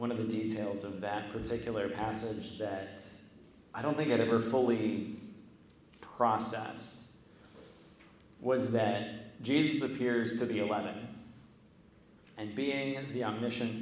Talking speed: 115 wpm